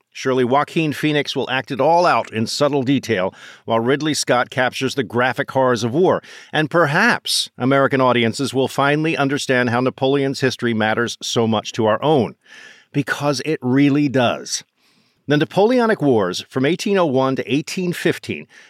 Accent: American